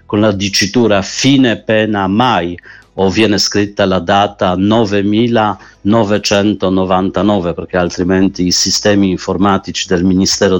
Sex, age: male, 50-69